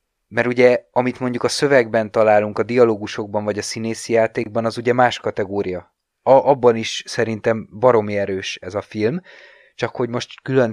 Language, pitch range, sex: Hungarian, 110-125 Hz, male